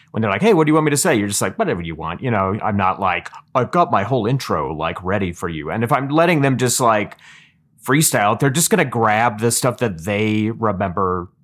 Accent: American